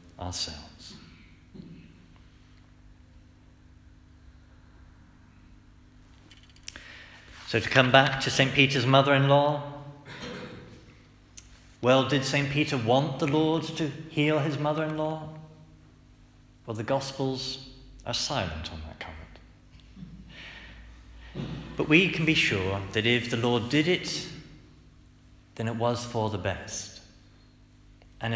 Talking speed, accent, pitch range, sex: 95 wpm, British, 95-130 Hz, male